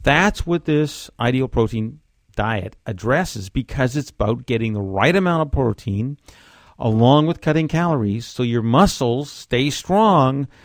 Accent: American